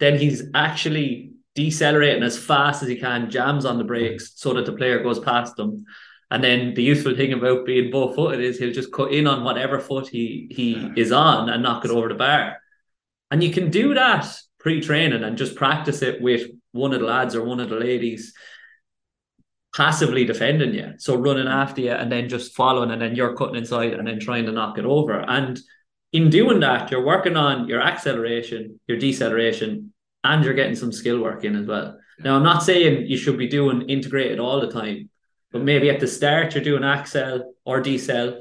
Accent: Irish